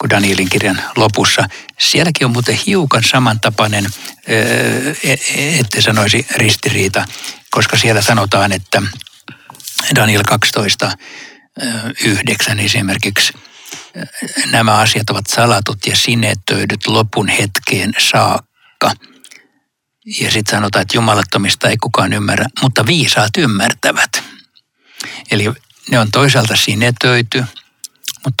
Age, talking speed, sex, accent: 60-79, 95 wpm, male, native